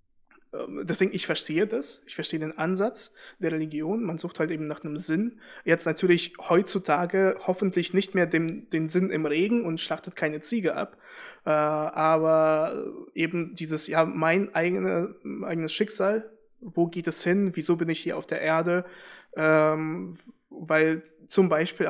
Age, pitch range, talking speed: 20-39, 160-200 Hz, 150 wpm